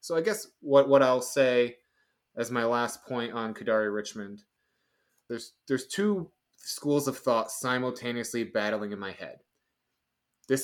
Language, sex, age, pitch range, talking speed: English, male, 20-39, 110-140 Hz, 145 wpm